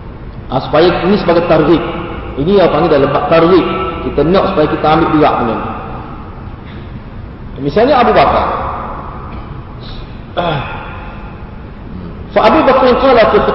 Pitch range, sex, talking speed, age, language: 165-205 Hz, male, 110 wpm, 40-59, Malay